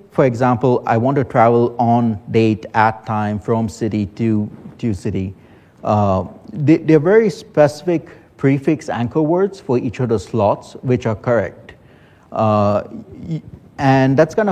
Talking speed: 145 wpm